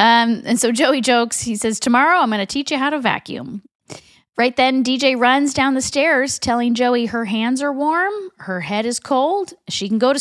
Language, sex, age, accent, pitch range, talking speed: English, female, 40-59, American, 210-280 Hz, 215 wpm